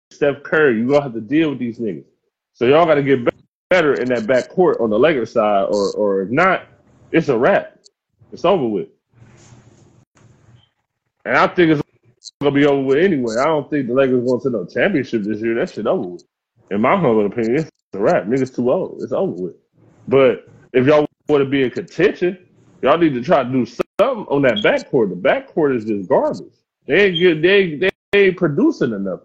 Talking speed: 215 wpm